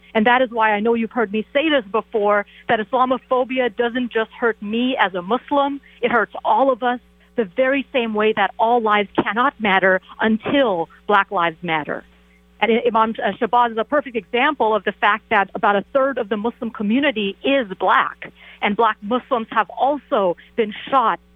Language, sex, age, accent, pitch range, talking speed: English, female, 40-59, American, 205-250 Hz, 185 wpm